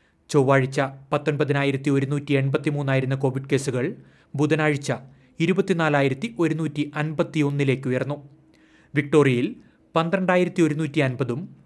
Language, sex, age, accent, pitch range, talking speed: Malayalam, male, 30-49, native, 135-165 Hz, 80 wpm